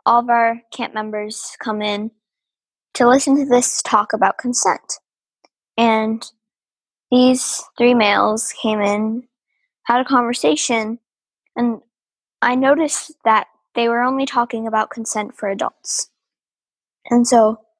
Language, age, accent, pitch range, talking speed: English, 10-29, American, 215-250 Hz, 125 wpm